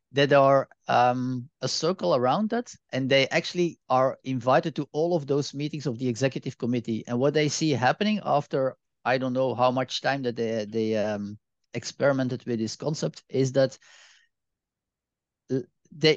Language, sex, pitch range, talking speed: English, male, 125-155 Hz, 165 wpm